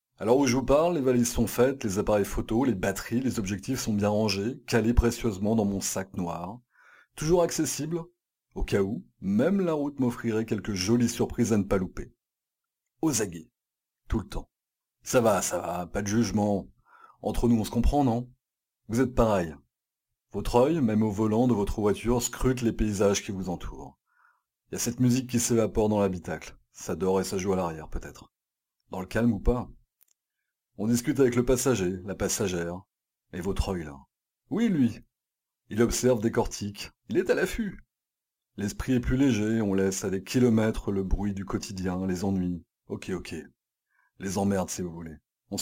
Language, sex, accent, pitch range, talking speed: French, male, French, 95-125 Hz, 185 wpm